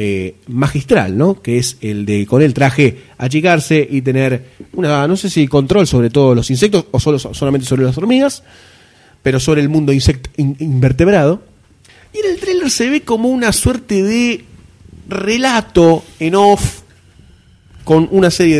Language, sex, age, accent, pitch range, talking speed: Spanish, male, 30-49, Argentinian, 110-155 Hz, 165 wpm